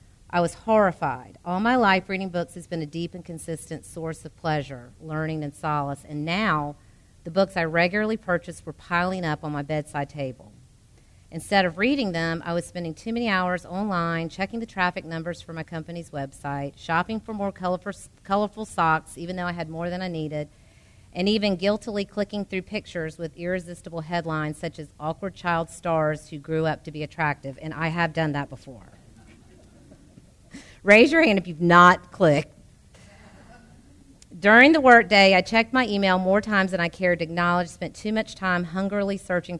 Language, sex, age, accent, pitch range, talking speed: English, female, 40-59, American, 150-185 Hz, 185 wpm